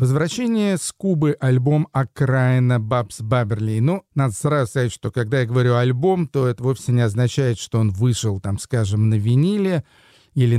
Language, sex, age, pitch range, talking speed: Russian, male, 40-59, 115-140 Hz, 165 wpm